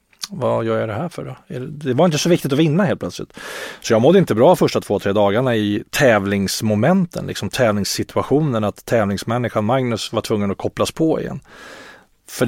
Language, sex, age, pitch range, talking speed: English, male, 30-49, 100-125 Hz, 190 wpm